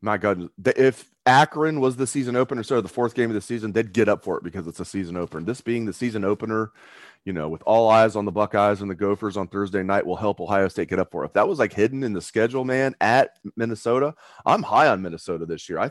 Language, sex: English, male